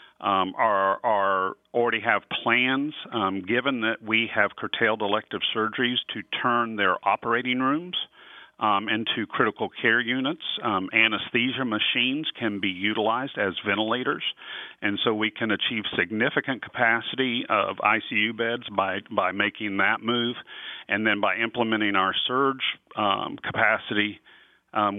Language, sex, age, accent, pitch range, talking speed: English, male, 50-69, American, 105-120 Hz, 135 wpm